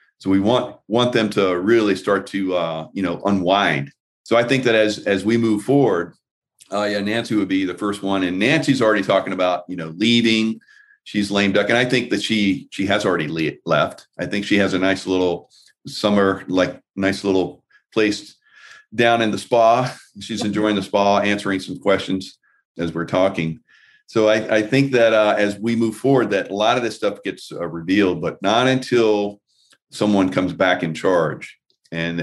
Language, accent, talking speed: English, American, 195 wpm